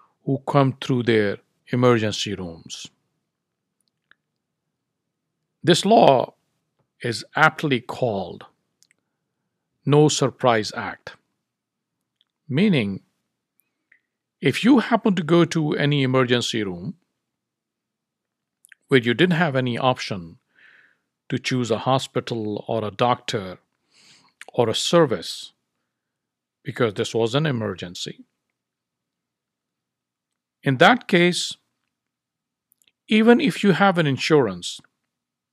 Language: English